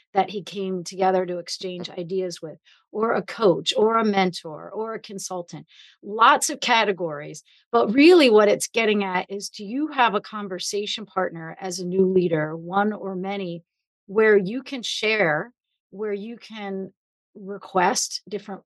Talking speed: 160 wpm